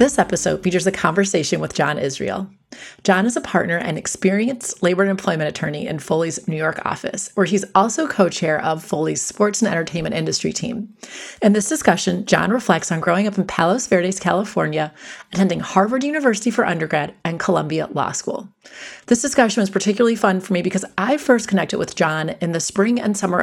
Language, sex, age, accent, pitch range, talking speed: English, female, 30-49, American, 185-235 Hz, 190 wpm